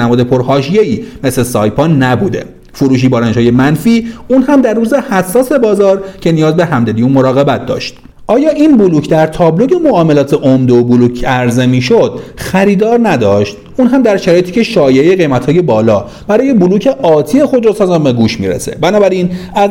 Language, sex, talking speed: Persian, male, 165 wpm